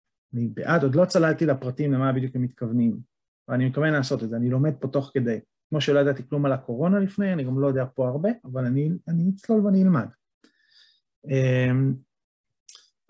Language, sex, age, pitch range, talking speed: Hebrew, male, 30-49, 125-165 Hz, 185 wpm